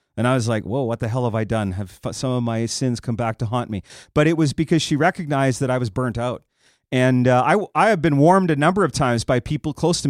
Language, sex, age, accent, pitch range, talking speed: English, male, 30-49, American, 125-165 Hz, 280 wpm